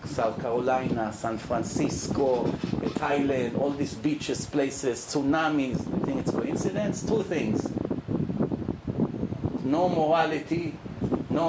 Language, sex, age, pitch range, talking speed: English, male, 50-69, 155-235 Hz, 100 wpm